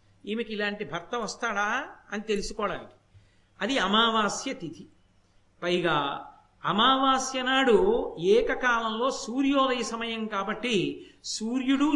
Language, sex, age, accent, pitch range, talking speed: Telugu, male, 50-69, native, 195-260 Hz, 85 wpm